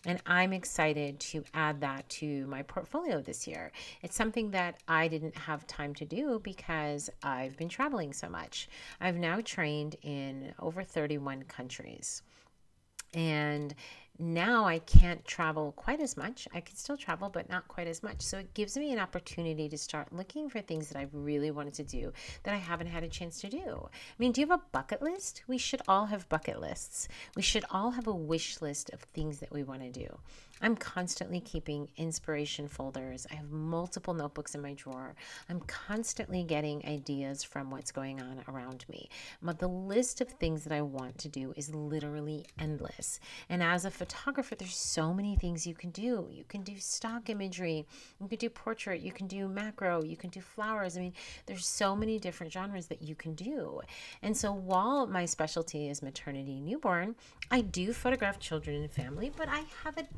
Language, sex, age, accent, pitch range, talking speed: English, female, 40-59, American, 150-200 Hz, 195 wpm